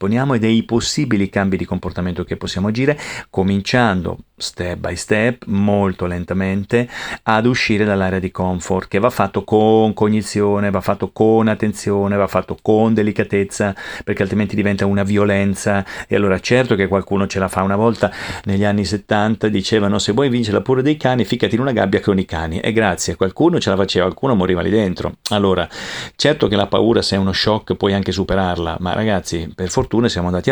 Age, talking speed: 40-59, 185 wpm